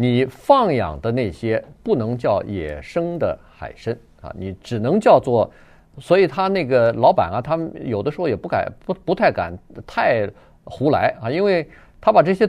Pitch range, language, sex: 115-170 Hz, Chinese, male